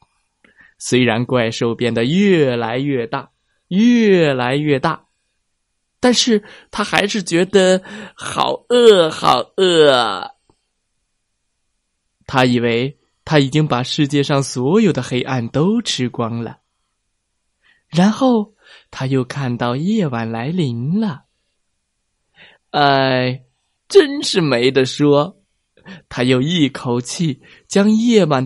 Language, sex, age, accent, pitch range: Chinese, male, 20-39, native, 125-195 Hz